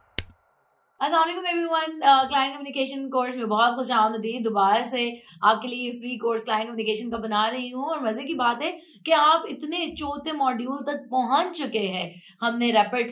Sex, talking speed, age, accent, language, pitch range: female, 180 wpm, 20-39, Indian, English, 210-255 Hz